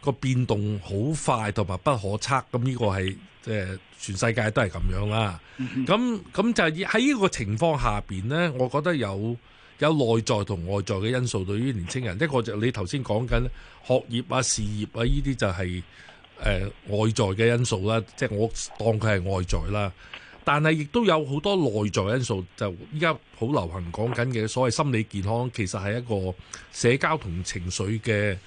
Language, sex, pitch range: Chinese, male, 100-135 Hz